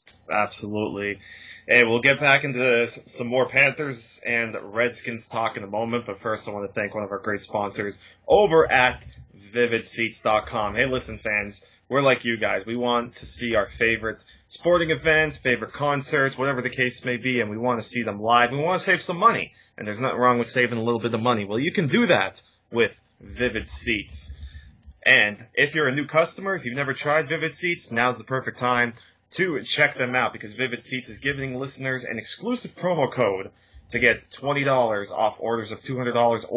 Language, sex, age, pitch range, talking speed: English, male, 20-39, 110-135 Hz, 200 wpm